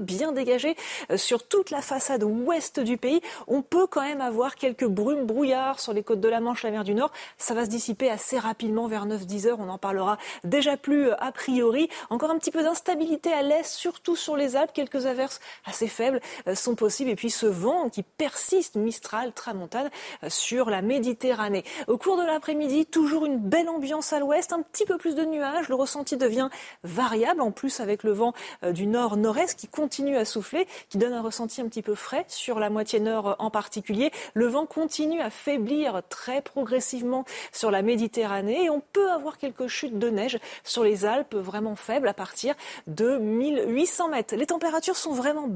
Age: 30-49